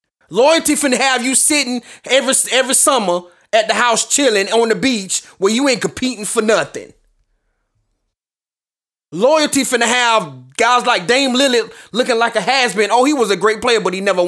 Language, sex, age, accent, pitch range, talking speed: English, male, 20-39, American, 200-265 Hz, 175 wpm